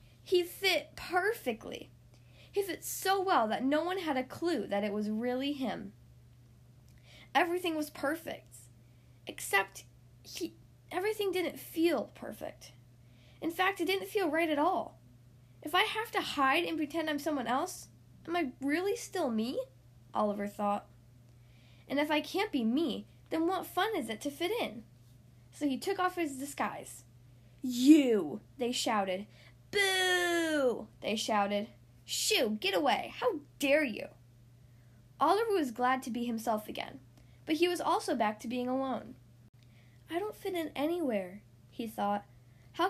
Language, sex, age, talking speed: English, female, 10-29, 150 wpm